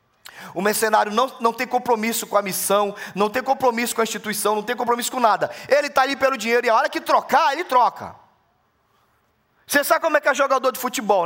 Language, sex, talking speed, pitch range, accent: Portuguese, male, 220 wpm, 205-290 Hz, Brazilian